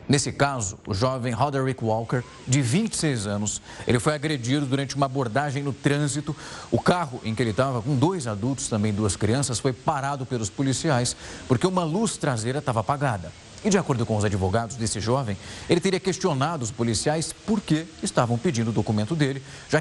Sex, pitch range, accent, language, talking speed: male, 110-145 Hz, Brazilian, Portuguese, 180 wpm